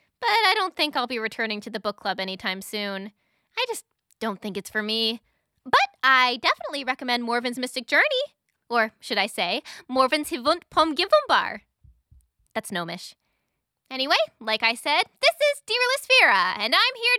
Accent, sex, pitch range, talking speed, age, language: American, female, 240-365 Hz, 170 wpm, 20-39, English